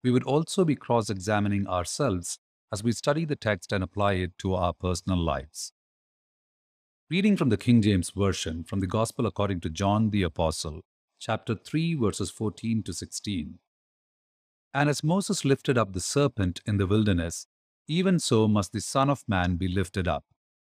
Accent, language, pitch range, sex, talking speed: Indian, English, 95-135 Hz, male, 170 wpm